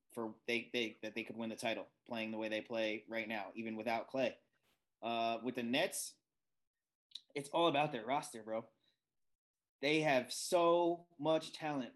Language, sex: English, male